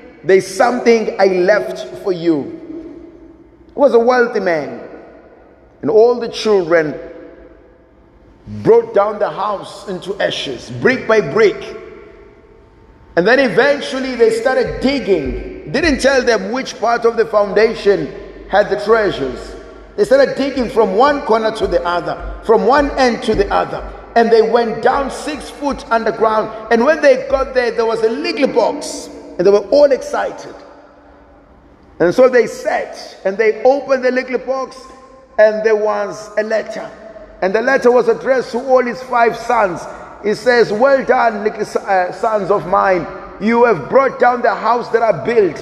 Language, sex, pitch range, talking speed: English, male, 185-255 Hz, 160 wpm